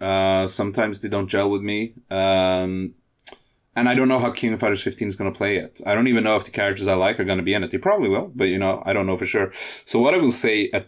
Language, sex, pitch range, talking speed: English, male, 90-120 Hz, 300 wpm